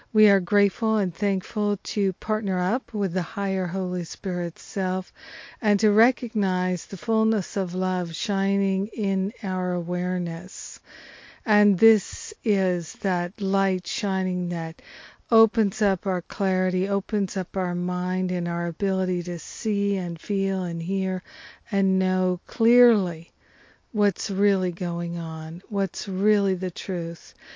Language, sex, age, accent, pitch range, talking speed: English, female, 50-69, American, 180-205 Hz, 130 wpm